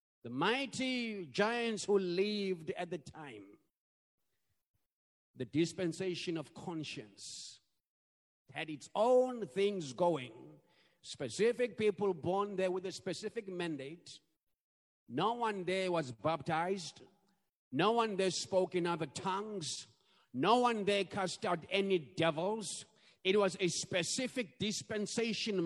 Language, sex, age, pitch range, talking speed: English, male, 50-69, 165-210 Hz, 115 wpm